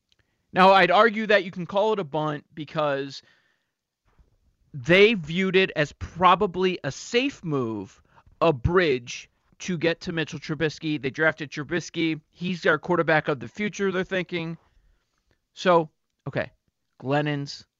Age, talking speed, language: 40-59, 135 wpm, English